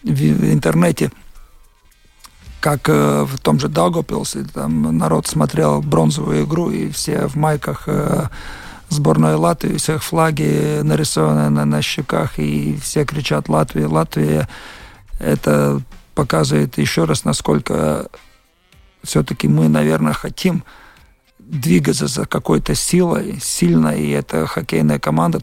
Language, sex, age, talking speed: Russian, male, 50-69, 115 wpm